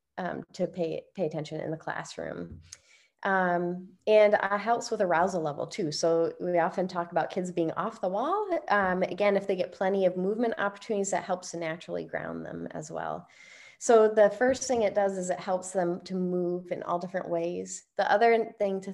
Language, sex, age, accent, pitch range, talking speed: English, female, 20-39, American, 170-215 Hz, 205 wpm